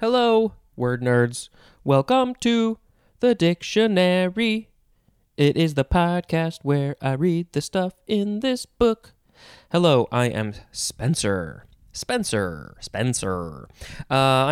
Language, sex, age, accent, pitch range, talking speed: English, male, 20-39, American, 120-175 Hz, 110 wpm